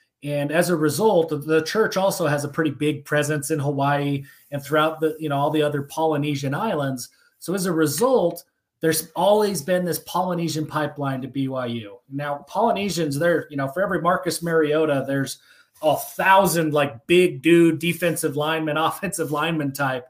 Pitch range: 145-170 Hz